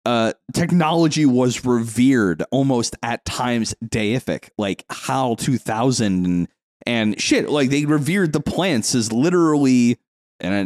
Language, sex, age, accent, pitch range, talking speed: English, male, 30-49, American, 105-130 Hz, 125 wpm